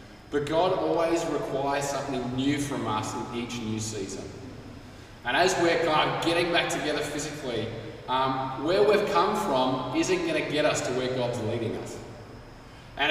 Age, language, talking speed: 20-39, English, 170 wpm